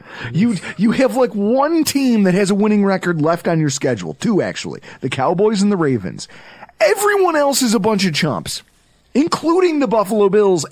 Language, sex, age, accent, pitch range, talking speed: English, male, 30-49, American, 140-210 Hz, 185 wpm